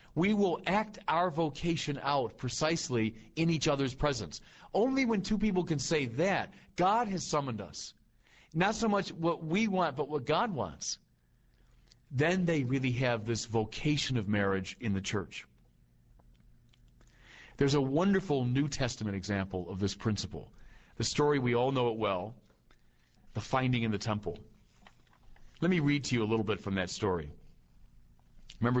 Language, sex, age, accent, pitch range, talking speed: English, male, 40-59, American, 100-145 Hz, 160 wpm